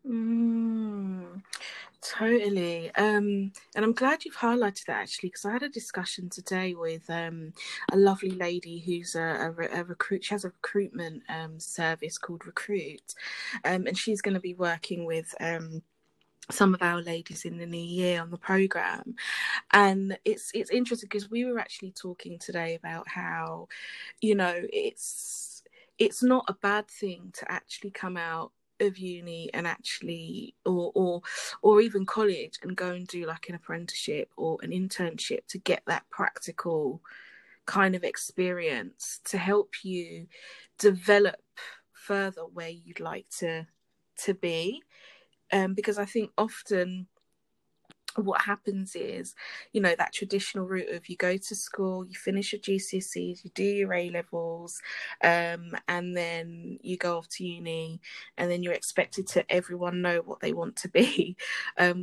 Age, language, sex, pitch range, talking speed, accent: 20-39, English, female, 175-205 Hz, 160 wpm, British